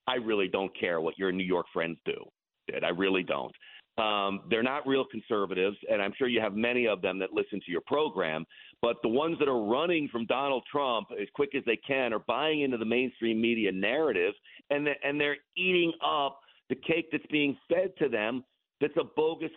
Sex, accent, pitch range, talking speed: male, American, 110-155 Hz, 205 wpm